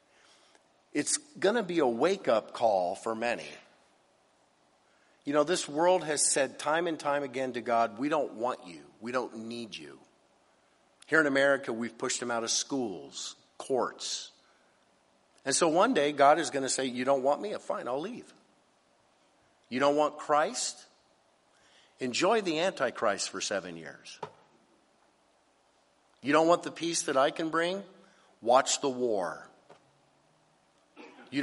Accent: American